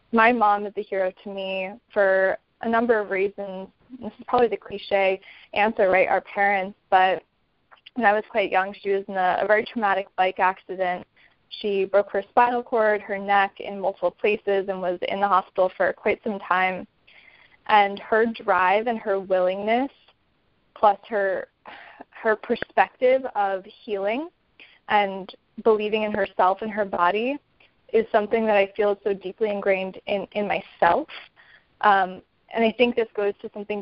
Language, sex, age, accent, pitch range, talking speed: English, female, 20-39, American, 190-220 Hz, 165 wpm